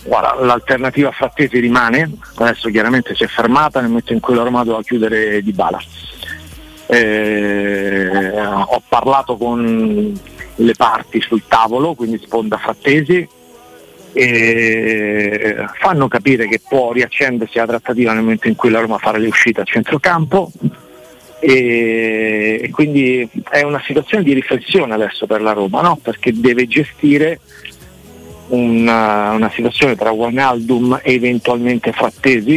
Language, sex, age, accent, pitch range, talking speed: Italian, male, 40-59, native, 110-130 Hz, 135 wpm